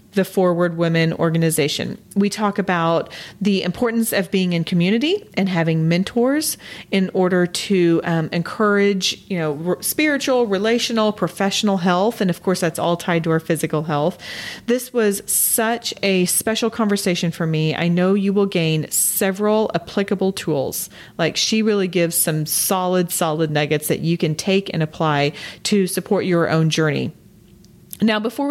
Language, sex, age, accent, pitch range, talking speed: English, female, 40-59, American, 170-210 Hz, 155 wpm